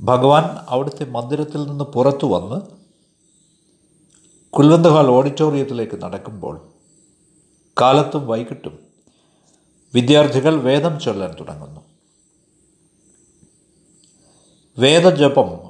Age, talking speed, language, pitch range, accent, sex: 50-69, 60 wpm, Malayalam, 135-170 Hz, native, male